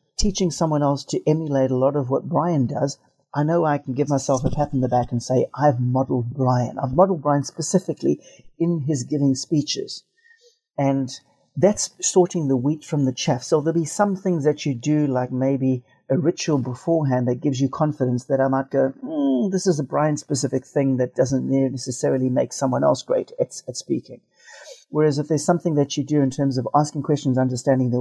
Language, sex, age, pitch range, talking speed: English, male, 40-59, 130-155 Hz, 200 wpm